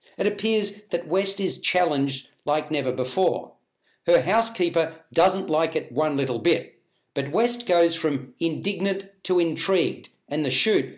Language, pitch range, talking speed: English, 145-190 Hz, 150 wpm